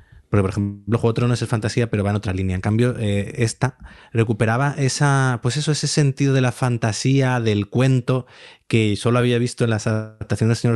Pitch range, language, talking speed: 105-125 Hz, Spanish, 220 wpm